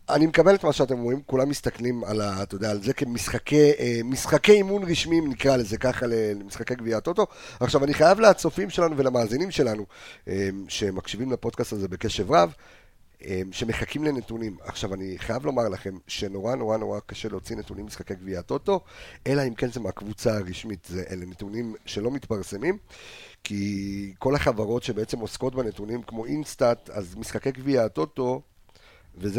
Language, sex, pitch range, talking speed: Hebrew, male, 105-145 Hz, 150 wpm